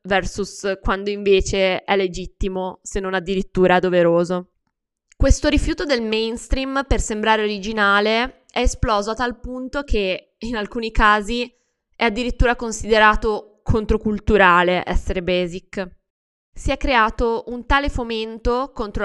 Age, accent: 20-39, native